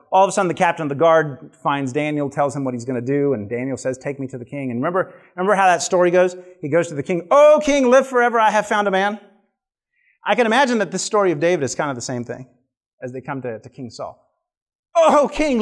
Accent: American